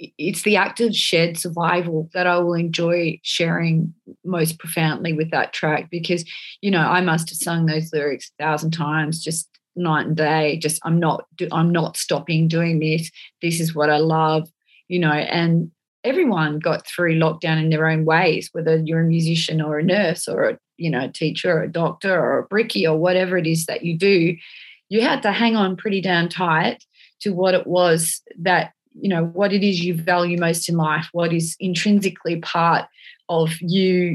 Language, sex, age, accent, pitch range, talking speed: English, female, 30-49, Australian, 160-180 Hz, 195 wpm